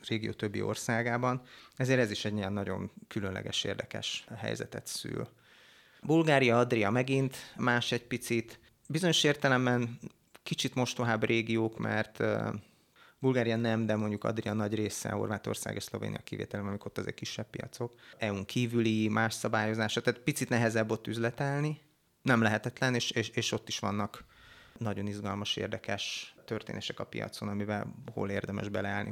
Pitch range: 105-120 Hz